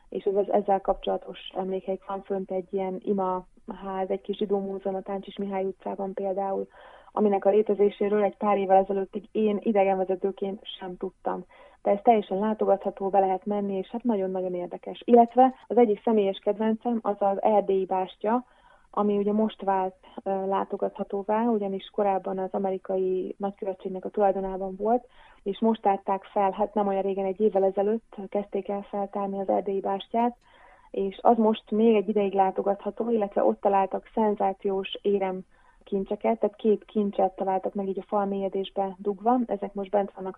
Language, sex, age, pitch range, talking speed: Hungarian, female, 30-49, 195-210 Hz, 160 wpm